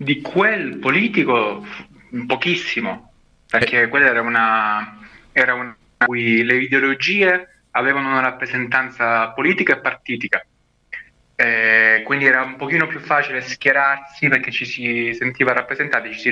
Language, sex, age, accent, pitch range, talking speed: Italian, male, 20-39, native, 115-135 Hz, 125 wpm